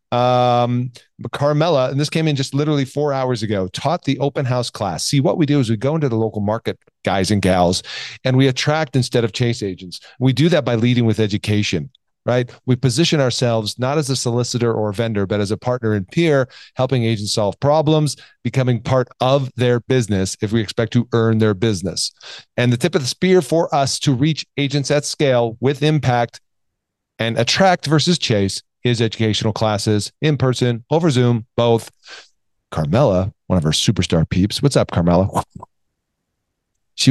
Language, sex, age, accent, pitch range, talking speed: English, male, 40-59, American, 105-140 Hz, 185 wpm